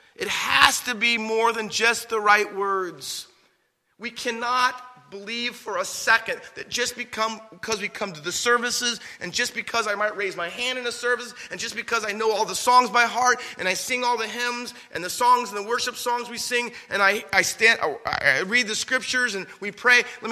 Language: English